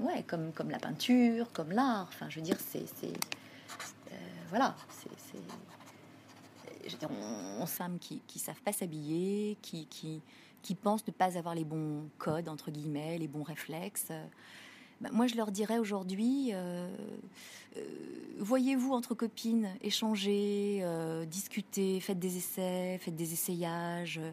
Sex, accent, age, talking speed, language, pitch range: female, French, 30-49, 165 wpm, French, 175-230 Hz